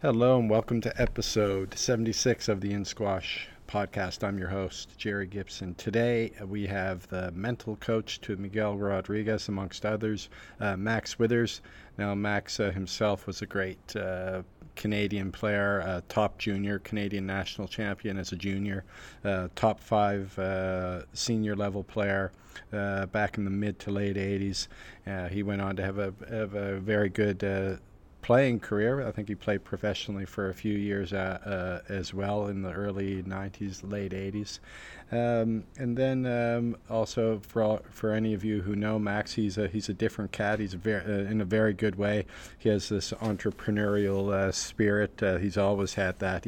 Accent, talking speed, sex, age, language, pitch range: American, 175 wpm, male, 40-59, English, 95-110 Hz